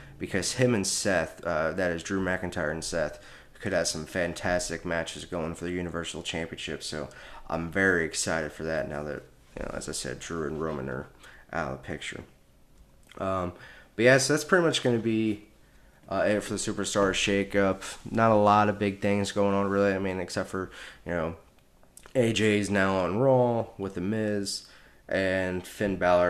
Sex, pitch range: male, 90-110 Hz